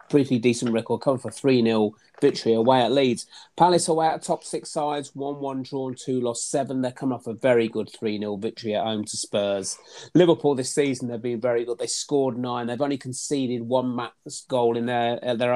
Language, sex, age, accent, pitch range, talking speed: English, male, 30-49, British, 115-135 Hz, 210 wpm